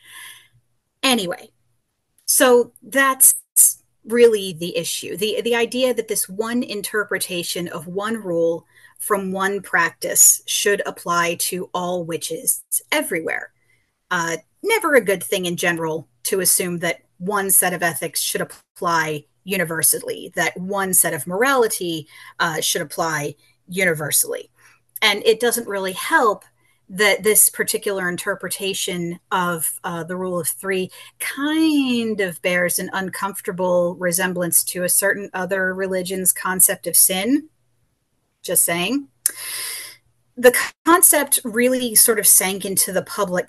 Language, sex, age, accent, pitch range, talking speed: English, female, 30-49, American, 170-215 Hz, 125 wpm